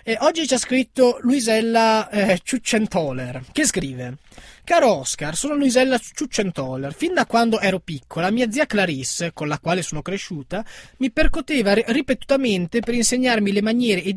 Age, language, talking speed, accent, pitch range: 20-39, Italian, 150 wpm, native, 175-240 Hz